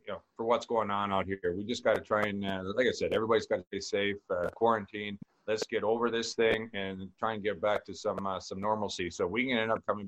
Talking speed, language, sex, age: 260 wpm, English, male, 40-59